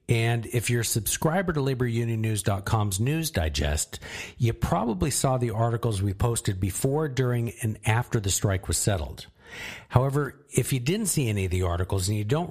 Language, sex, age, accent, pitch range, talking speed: English, male, 50-69, American, 100-135 Hz, 175 wpm